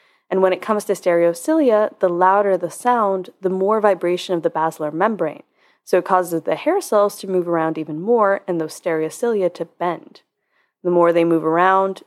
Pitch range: 170-205 Hz